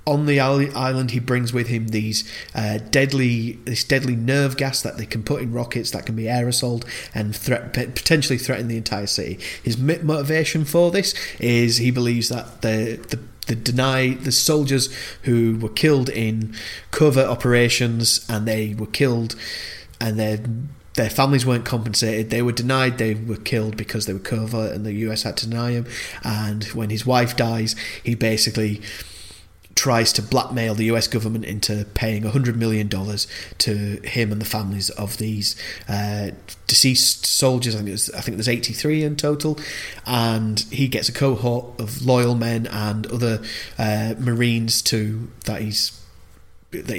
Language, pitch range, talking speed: English, 110-125 Hz, 170 wpm